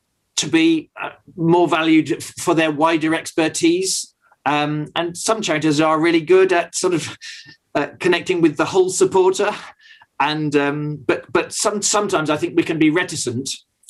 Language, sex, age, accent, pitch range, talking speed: English, male, 40-59, British, 150-215 Hz, 155 wpm